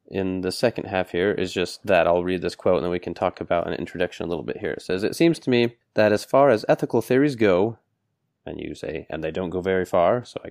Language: English